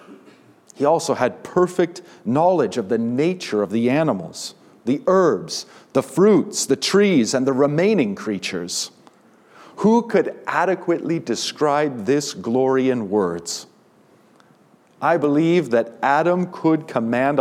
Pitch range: 125-175 Hz